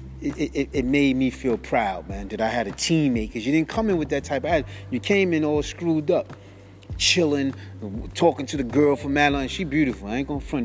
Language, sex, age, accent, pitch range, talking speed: English, male, 30-49, American, 105-155 Hz, 235 wpm